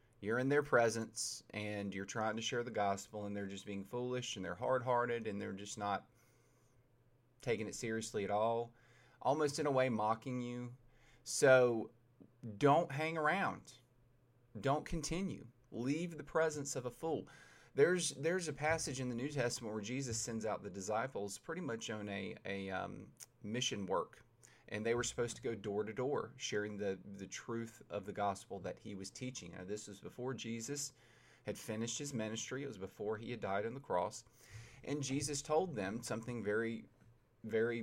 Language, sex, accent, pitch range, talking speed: English, male, American, 110-130 Hz, 180 wpm